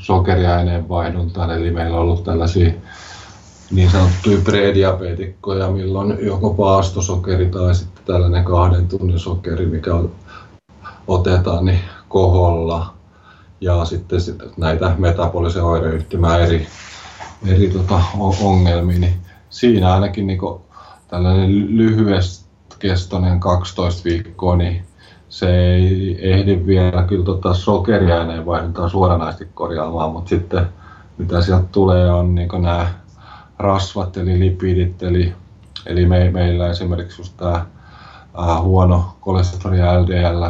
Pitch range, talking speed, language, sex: 85-95 Hz, 105 wpm, Finnish, male